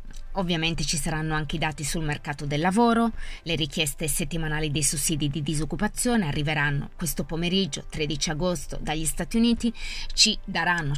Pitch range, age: 145-175 Hz, 20-39